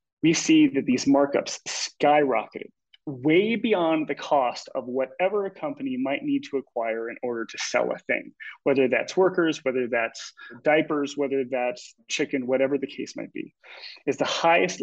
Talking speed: 165 wpm